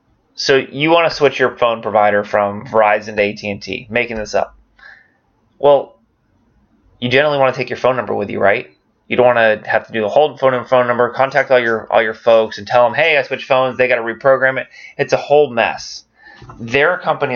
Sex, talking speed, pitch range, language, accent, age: male, 230 wpm, 110-135 Hz, English, American, 20-39